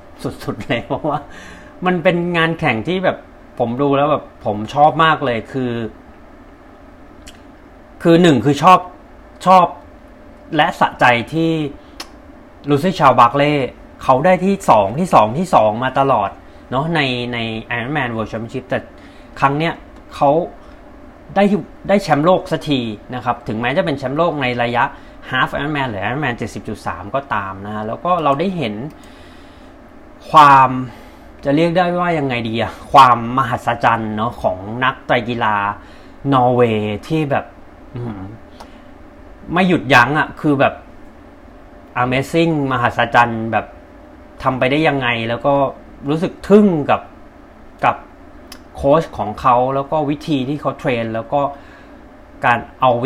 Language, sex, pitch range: Thai, male, 115-155 Hz